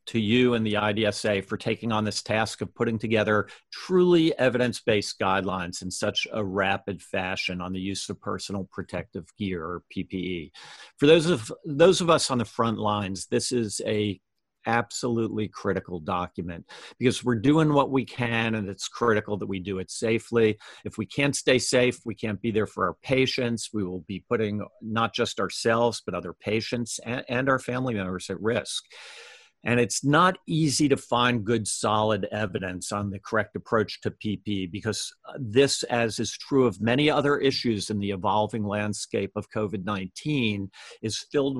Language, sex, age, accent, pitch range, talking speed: English, male, 50-69, American, 100-125 Hz, 175 wpm